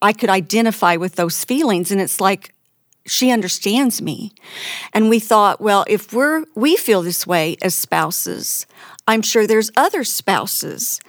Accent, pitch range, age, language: American, 175-210 Hz, 50-69, English